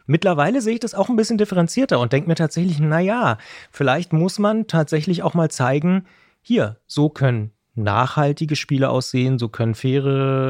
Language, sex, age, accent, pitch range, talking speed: German, male, 30-49, German, 125-160 Hz, 165 wpm